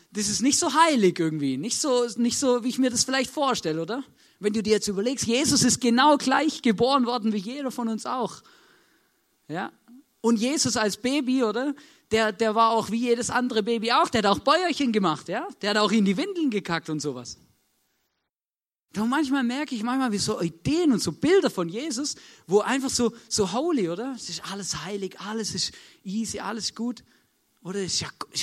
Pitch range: 175-250 Hz